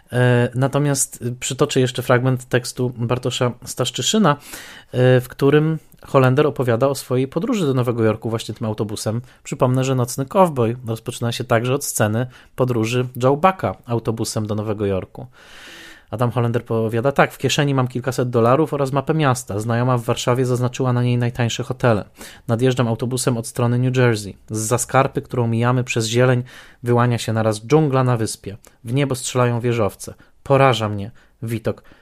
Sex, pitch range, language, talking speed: male, 115-135 Hz, Polish, 150 wpm